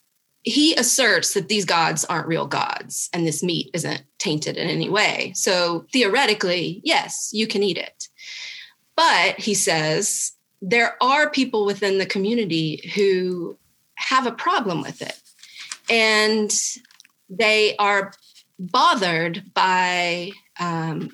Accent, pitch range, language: American, 165-210 Hz, English